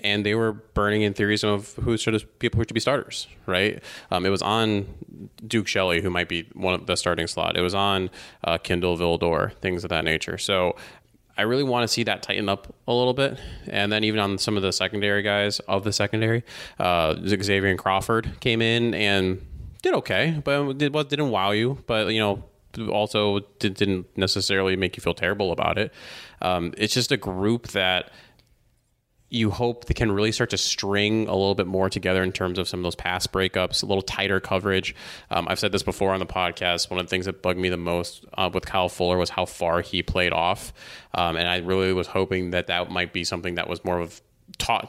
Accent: American